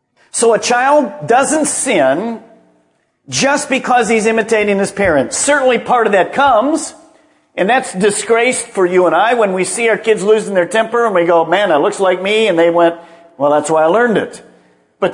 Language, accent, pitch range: English, American, 165-230 Hz